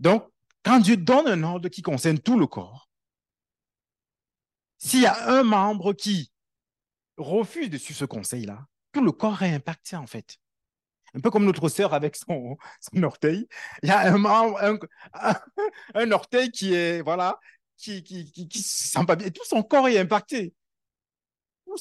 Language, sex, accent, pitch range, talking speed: French, male, French, 135-205 Hz, 170 wpm